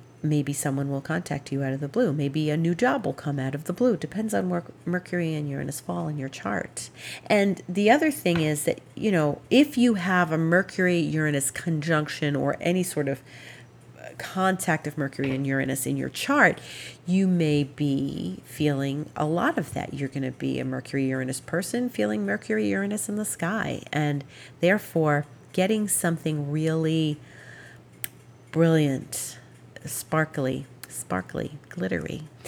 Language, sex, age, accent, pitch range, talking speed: English, female, 40-59, American, 135-185 Hz, 155 wpm